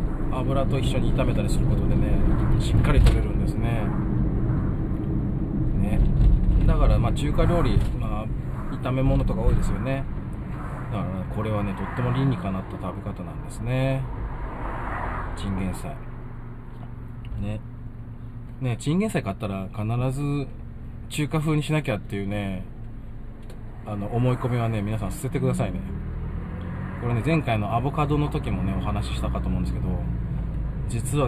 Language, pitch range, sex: Japanese, 95-120 Hz, male